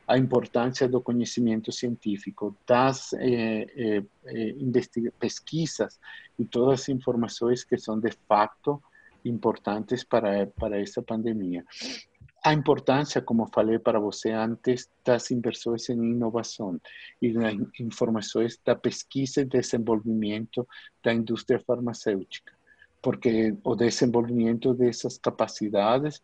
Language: Portuguese